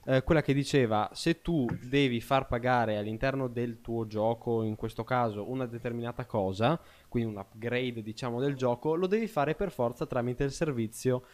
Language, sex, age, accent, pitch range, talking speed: Italian, male, 20-39, native, 110-140 Hz, 175 wpm